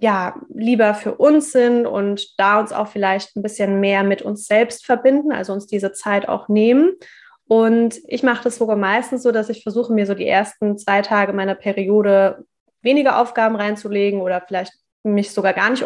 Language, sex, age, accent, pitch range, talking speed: German, female, 20-39, German, 205-240 Hz, 190 wpm